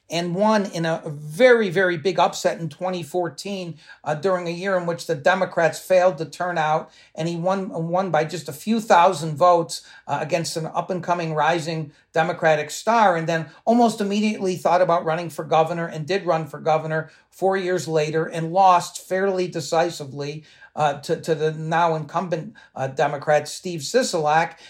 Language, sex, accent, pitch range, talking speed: English, male, American, 155-180 Hz, 170 wpm